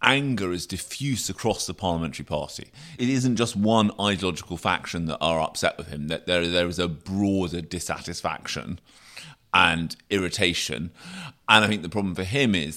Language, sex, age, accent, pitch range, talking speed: English, male, 30-49, British, 85-110 Hz, 165 wpm